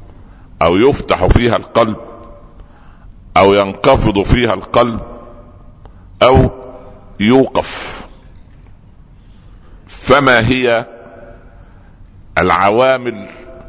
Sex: male